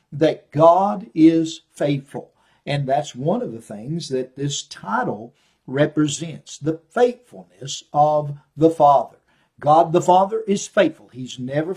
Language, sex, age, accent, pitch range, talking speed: English, male, 50-69, American, 140-185 Hz, 135 wpm